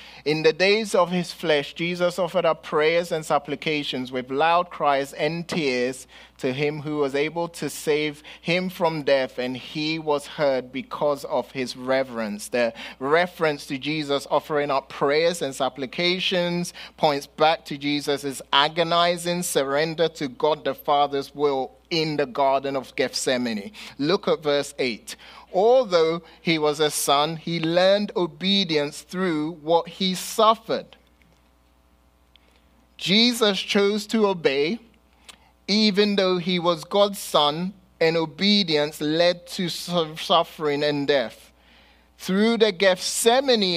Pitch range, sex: 145-185 Hz, male